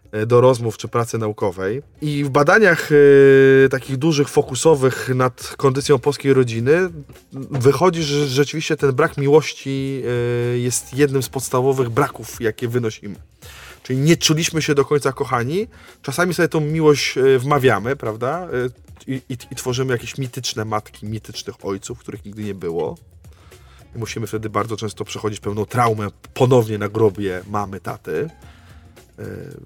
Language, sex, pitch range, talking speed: Polish, male, 110-145 Hz, 140 wpm